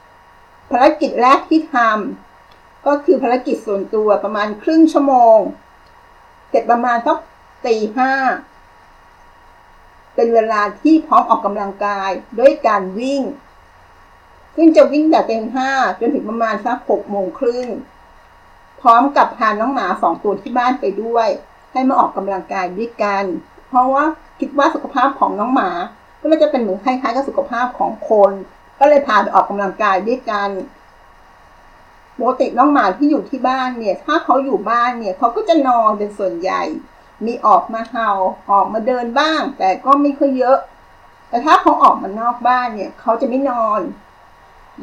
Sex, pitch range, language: female, 210-280 Hz, Thai